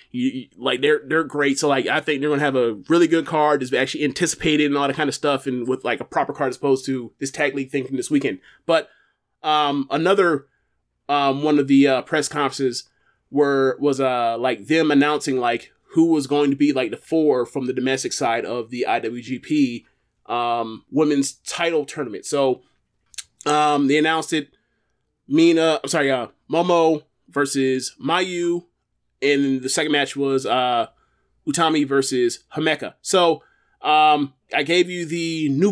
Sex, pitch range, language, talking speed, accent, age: male, 135-170 Hz, English, 175 wpm, American, 20-39